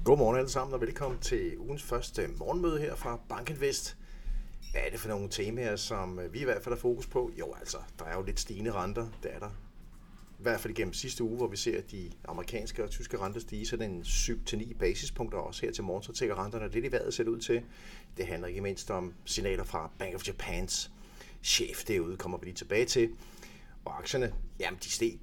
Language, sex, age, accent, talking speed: Danish, male, 60-79, native, 225 wpm